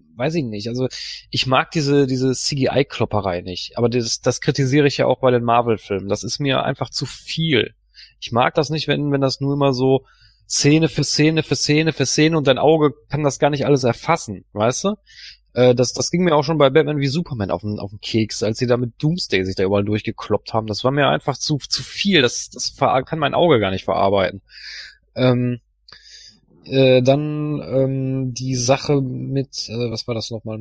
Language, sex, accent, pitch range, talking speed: German, male, German, 115-145 Hz, 210 wpm